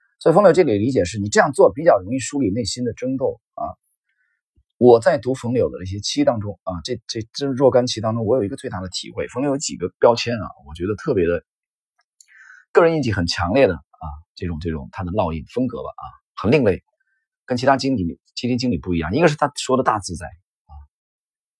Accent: native